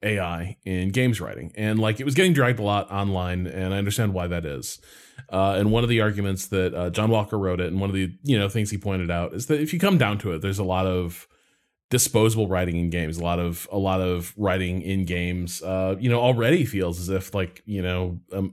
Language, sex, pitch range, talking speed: English, male, 95-120 Hz, 250 wpm